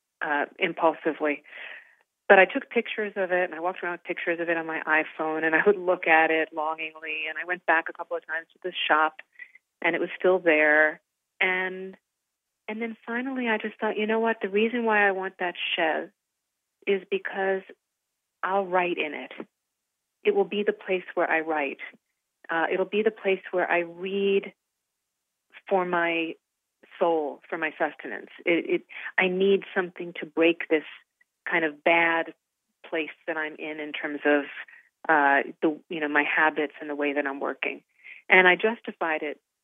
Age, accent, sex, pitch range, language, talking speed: 40-59, American, female, 160-210 Hz, English, 185 wpm